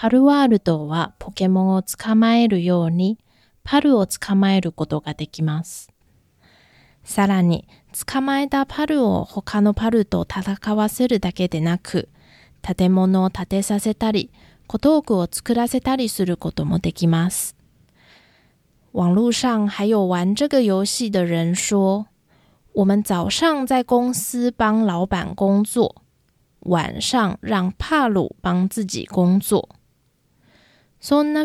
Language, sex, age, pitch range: Japanese, female, 20-39, 180-225 Hz